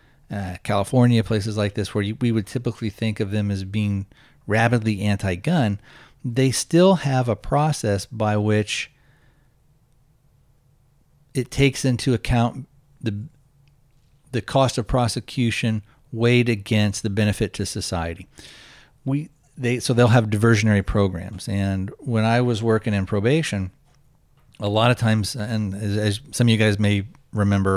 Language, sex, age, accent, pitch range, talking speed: English, male, 40-59, American, 100-130 Hz, 145 wpm